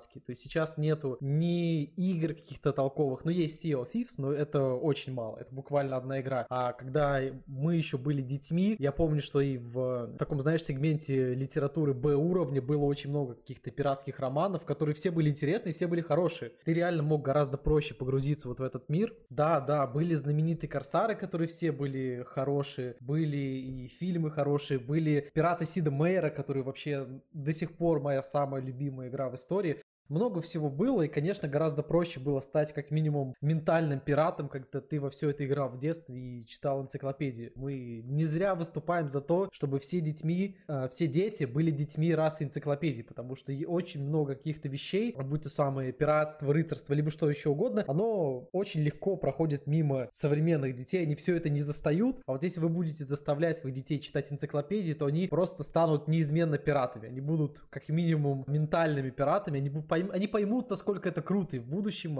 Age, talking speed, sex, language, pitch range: 20-39, 180 wpm, male, Russian, 135-160 Hz